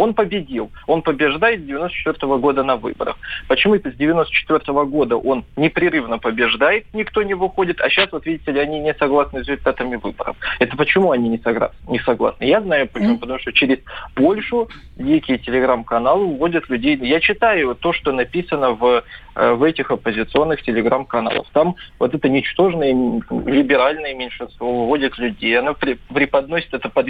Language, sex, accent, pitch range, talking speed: Russian, male, native, 130-160 Hz, 155 wpm